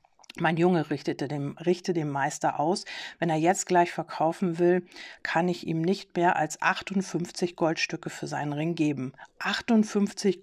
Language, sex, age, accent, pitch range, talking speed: German, female, 50-69, German, 160-195 Hz, 155 wpm